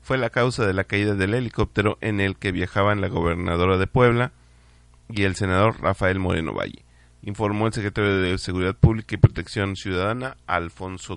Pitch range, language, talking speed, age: 90-110 Hz, Spanish, 170 wpm, 30-49